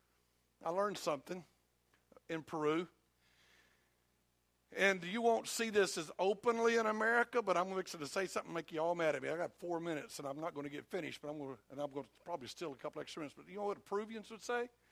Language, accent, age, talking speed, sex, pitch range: English, American, 60-79, 235 wpm, male, 160-215 Hz